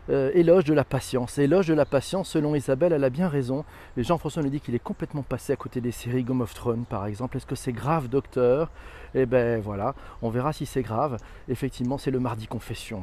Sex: male